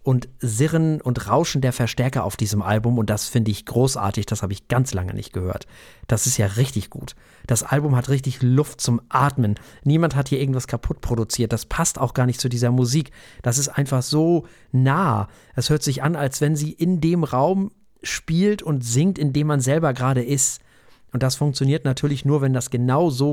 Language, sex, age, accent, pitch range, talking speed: German, male, 40-59, German, 120-145 Hz, 205 wpm